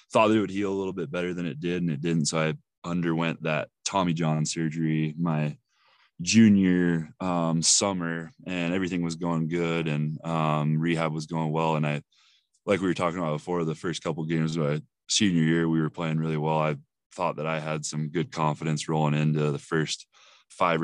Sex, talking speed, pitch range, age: male, 205 wpm, 75-85 Hz, 20-39